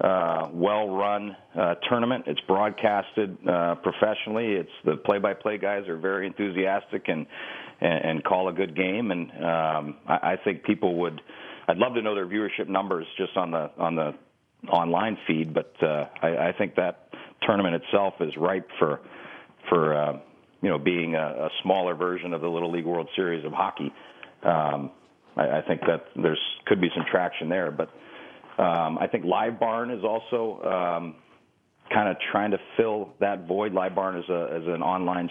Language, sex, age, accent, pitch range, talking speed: English, male, 40-59, American, 85-95 Hz, 180 wpm